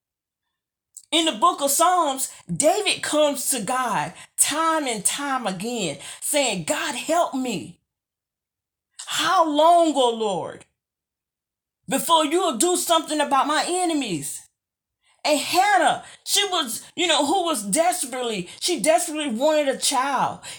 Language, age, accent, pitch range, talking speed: English, 40-59, American, 255-320 Hz, 125 wpm